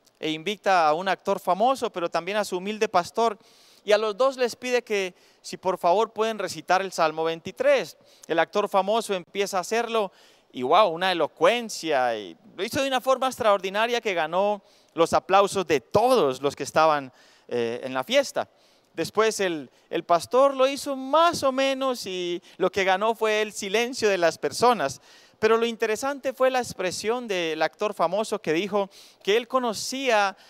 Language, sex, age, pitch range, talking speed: Spanish, male, 30-49, 165-225 Hz, 175 wpm